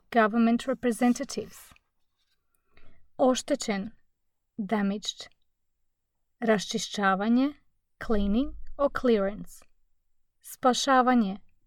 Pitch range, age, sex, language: 210-265 Hz, 30-49, female, Croatian